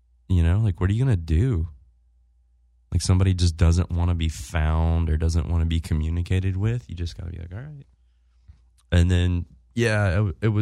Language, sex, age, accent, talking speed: English, male, 20-39, American, 205 wpm